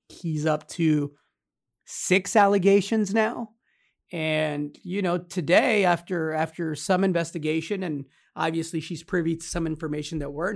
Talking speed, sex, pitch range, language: 130 wpm, male, 150-180 Hz, English